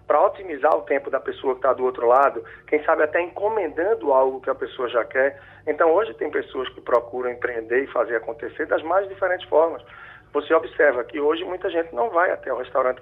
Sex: male